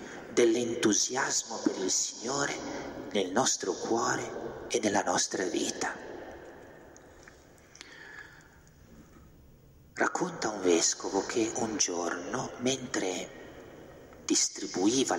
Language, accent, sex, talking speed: Italian, native, male, 75 wpm